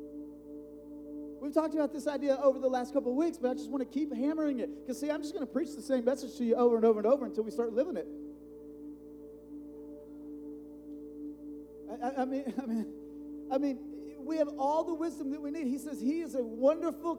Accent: American